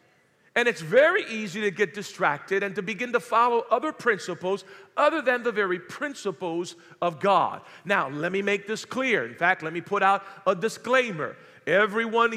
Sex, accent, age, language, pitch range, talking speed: male, American, 50-69, English, 205-280 Hz, 175 wpm